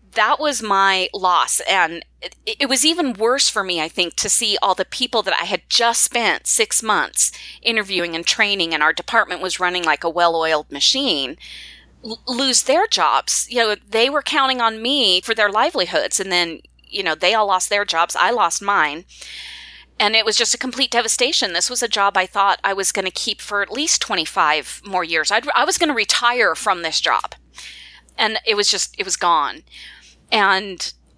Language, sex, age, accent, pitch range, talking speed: English, female, 30-49, American, 180-245 Hz, 200 wpm